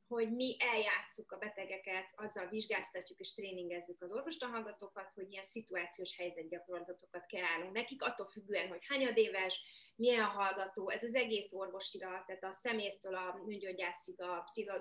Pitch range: 190-235 Hz